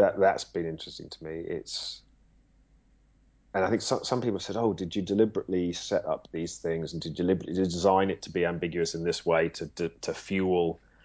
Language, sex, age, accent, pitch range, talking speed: English, male, 30-49, British, 80-100 Hz, 210 wpm